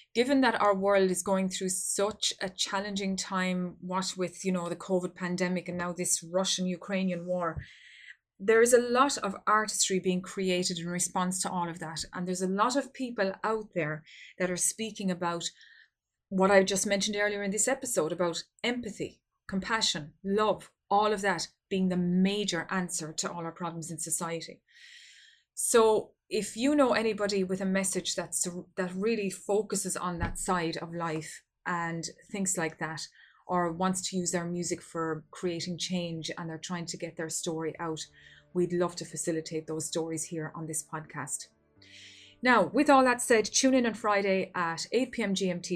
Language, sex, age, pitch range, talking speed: English, female, 20-39, 170-205 Hz, 175 wpm